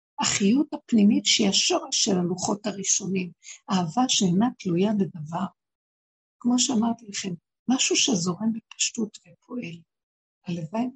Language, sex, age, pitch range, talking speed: Hebrew, female, 60-79, 185-235 Hz, 105 wpm